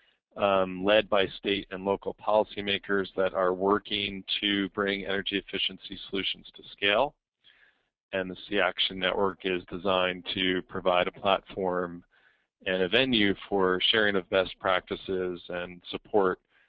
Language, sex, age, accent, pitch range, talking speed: English, male, 40-59, American, 90-100 Hz, 135 wpm